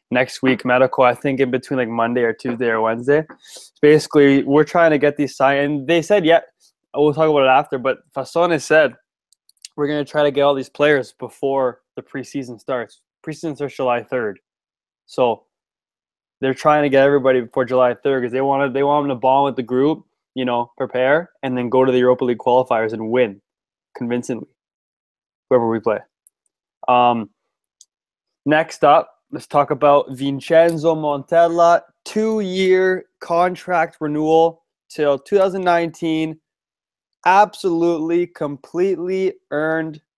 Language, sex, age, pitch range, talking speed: English, male, 20-39, 130-165 Hz, 150 wpm